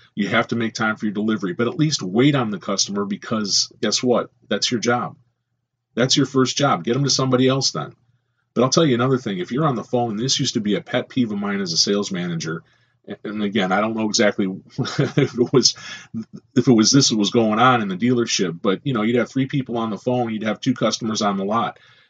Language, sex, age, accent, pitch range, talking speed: English, male, 30-49, American, 110-130 Hz, 250 wpm